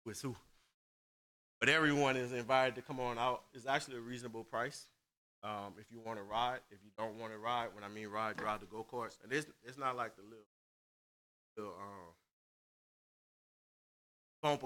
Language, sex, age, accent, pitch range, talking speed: English, male, 30-49, American, 100-125 Hz, 180 wpm